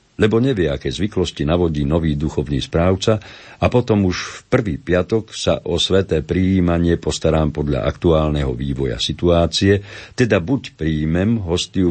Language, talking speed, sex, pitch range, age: Slovak, 135 wpm, male, 80-100 Hz, 50-69